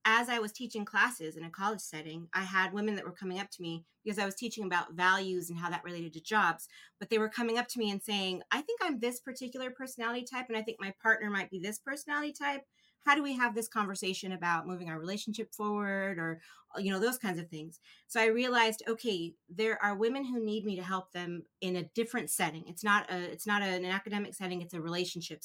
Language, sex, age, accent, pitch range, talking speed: English, female, 30-49, American, 175-225 Hz, 240 wpm